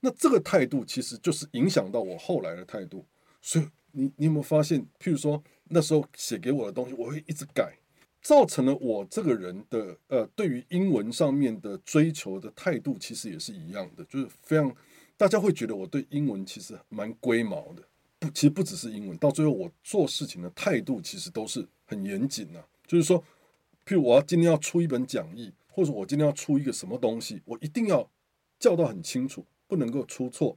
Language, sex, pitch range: Chinese, male, 125-170 Hz